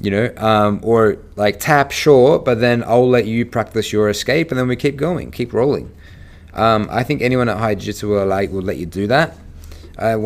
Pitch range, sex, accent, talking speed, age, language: 95-120 Hz, male, Australian, 220 wpm, 30-49, English